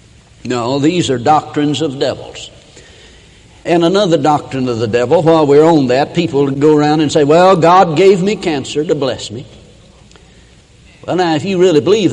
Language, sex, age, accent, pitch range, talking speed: English, male, 60-79, American, 130-165 Hz, 175 wpm